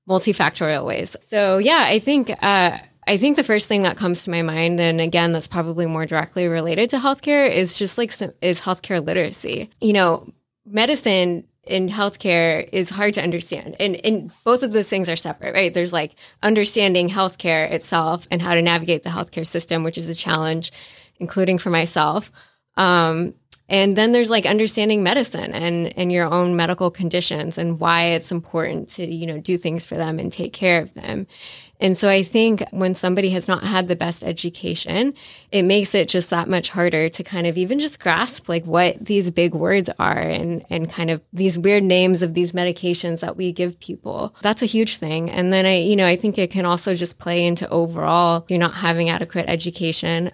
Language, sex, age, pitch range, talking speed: English, female, 10-29, 170-195 Hz, 200 wpm